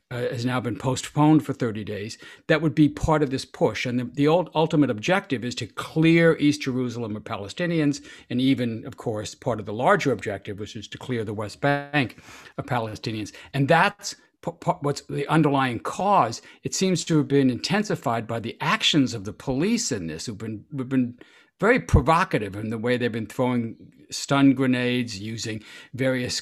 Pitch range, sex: 120-145 Hz, male